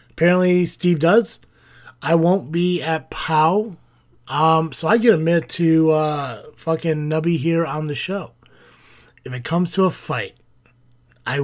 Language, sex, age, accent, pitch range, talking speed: English, male, 30-49, American, 120-165 Hz, 145 wpm